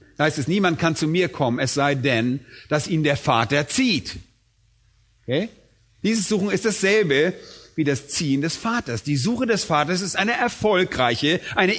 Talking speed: 170 wpm